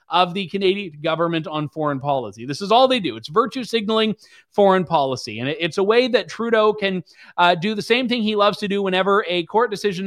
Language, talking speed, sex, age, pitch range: English, 220 wpm, male, 30-49, 175-220 Hz